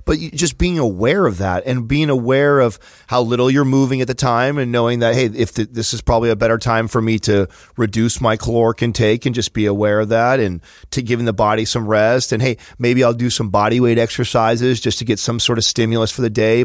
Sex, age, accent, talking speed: male, 30-49, American, 245 wpm